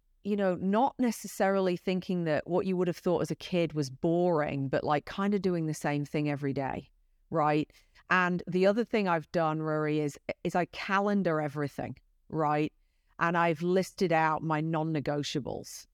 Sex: female